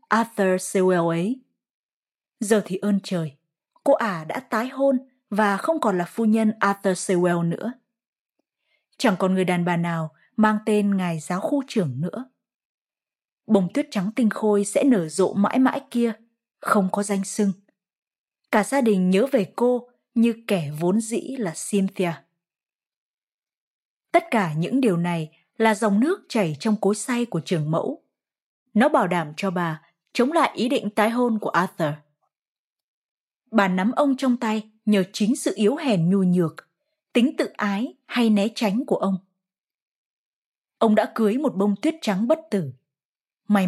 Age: 20-39